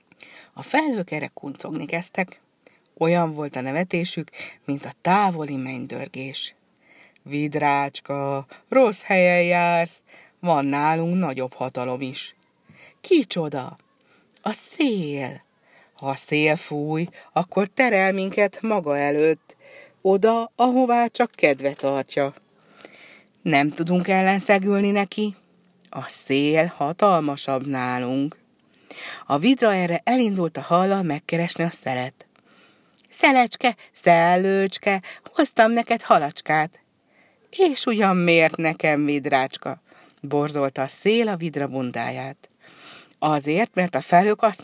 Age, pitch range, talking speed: 60-79, 145-200 Hz, 105 wpm